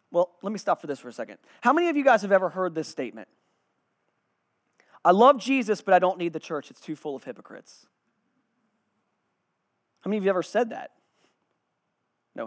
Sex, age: male, 30-49